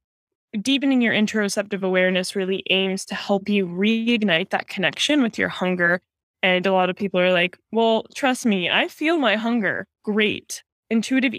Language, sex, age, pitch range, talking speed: Italian, female, 10-29, 190-230 Hz, 165 wpm